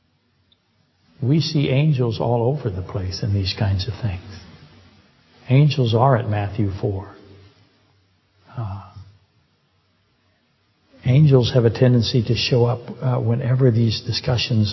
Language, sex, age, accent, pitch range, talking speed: English, male, 60-79, American, 105-130 Hz, 120 wpm